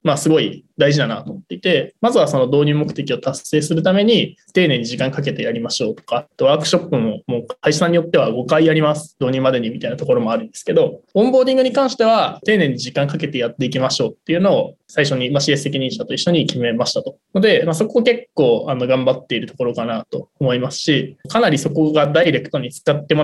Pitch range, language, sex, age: 135-220 Hz, Japanese, male, 20-39